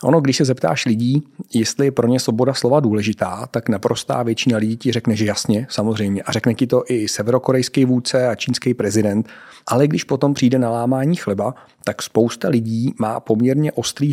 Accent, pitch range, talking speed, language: native, 110-130 Hz, 185 wpm, Czech